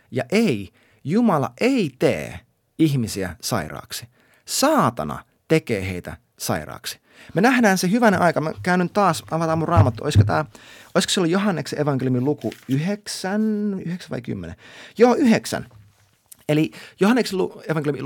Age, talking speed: 30-49, 135 wpm